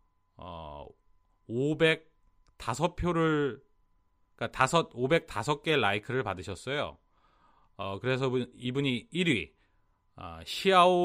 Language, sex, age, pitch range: Korean, male, 30-49, 95-155 Hz